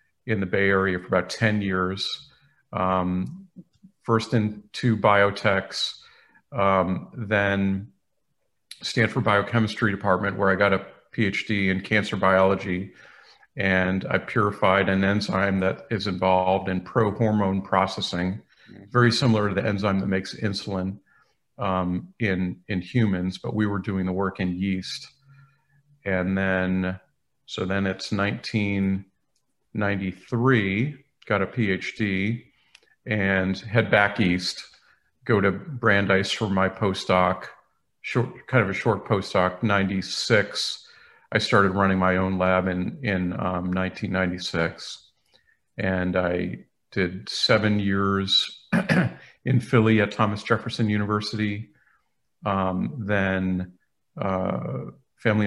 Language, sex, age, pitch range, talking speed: English, male, 40-59, 95-110 Hz, 120 wpm